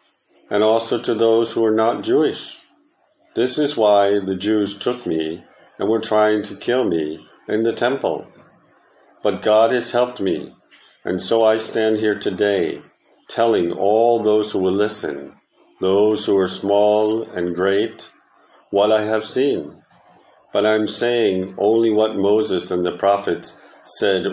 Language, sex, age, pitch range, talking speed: English, male, 50-69, 90-105 Hz, 155 wpm